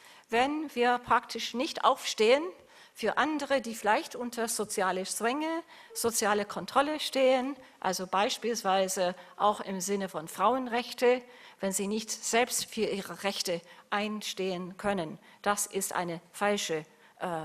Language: German